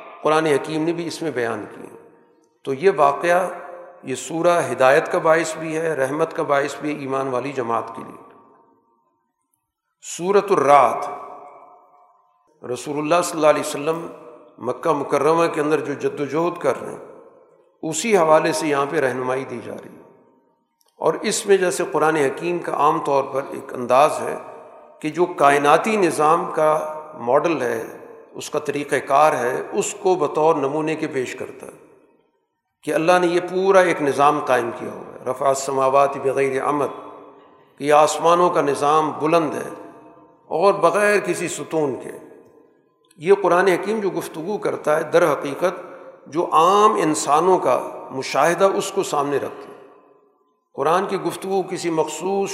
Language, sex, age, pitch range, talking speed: Urdu, male, 50-69, 145-190 Hz, 155 wpm